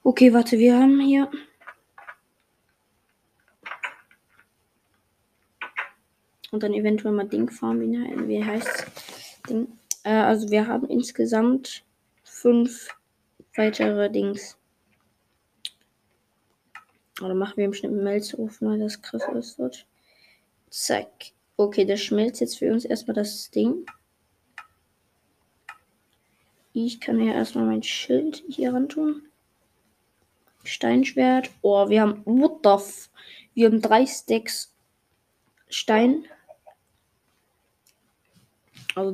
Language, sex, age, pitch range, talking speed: German, female, 20-39, 200-255 Hz, 95 wpm